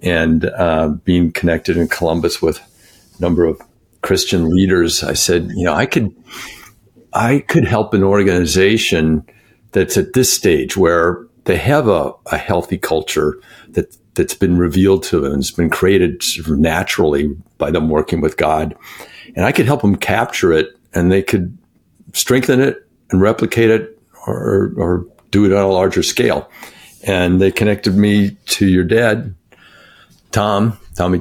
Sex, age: male, 50-69